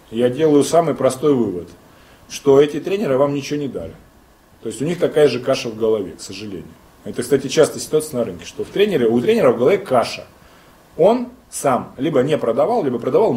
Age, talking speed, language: 30-49, 200 wpm, Russian